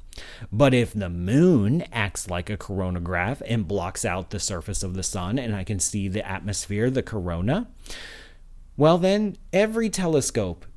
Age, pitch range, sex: 30-49, 100-145 Hz, male